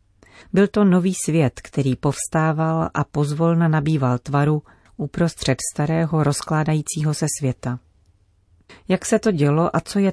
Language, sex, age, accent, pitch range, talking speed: Czech, female, 40-59, native, 135-170 Hz, 130 wpm